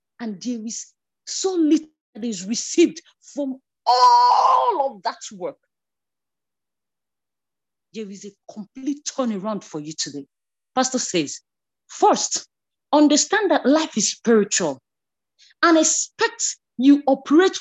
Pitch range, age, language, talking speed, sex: 215-320 Hz, 40-59, English, 110 wpm, female